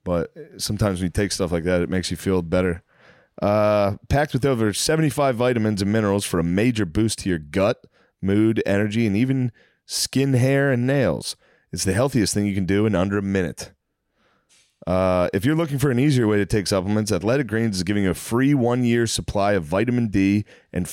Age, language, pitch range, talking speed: 30-49, English, 95-125 Hz, 205 wpm